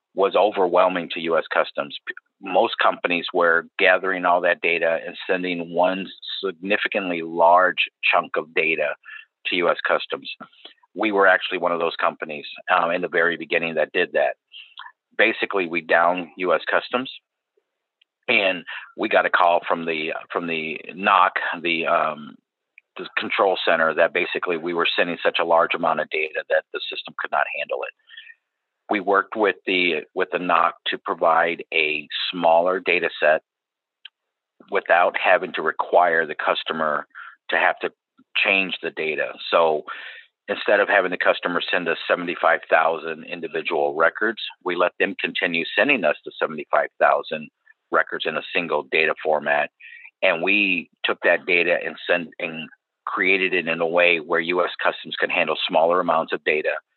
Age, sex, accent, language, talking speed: 50-69, male, American, English, 160 wpm